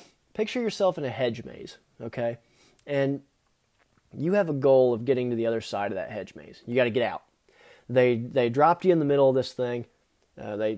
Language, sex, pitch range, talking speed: English, male, 120-150 Hz, 225 wpm